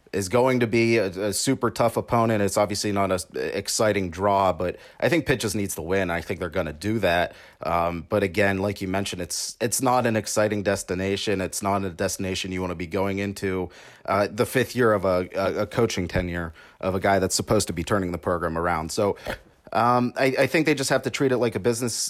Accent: American